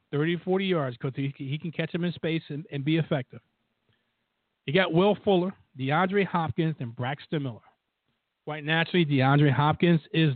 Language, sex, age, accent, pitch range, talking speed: English, male, 50-69, American, 125-160 Hz, 160 wpm